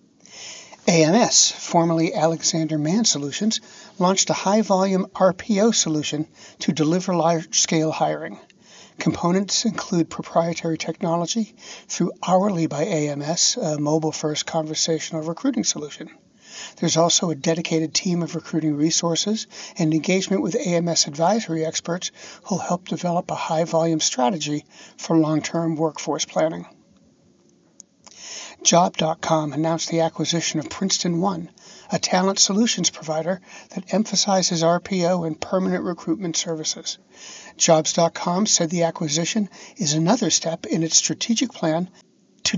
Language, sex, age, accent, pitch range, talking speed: English, male, 60-79, American, 160-195 Hz, 115 wpm